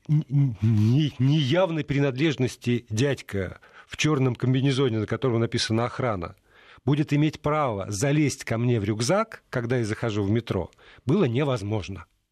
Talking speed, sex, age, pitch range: 120 wpm, male, 40-59, 110-155 Hz